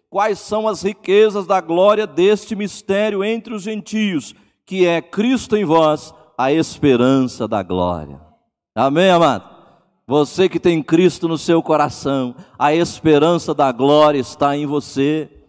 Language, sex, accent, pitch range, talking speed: Portuguese, male, Brazilian, 155-205 Hz, 140 wpm